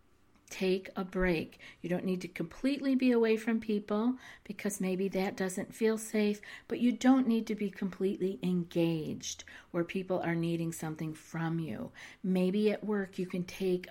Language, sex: English, female